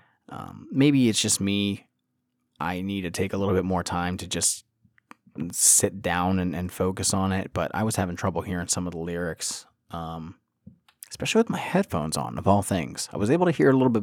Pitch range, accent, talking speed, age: 90-105 Hz, American, 220 wpm, 20-39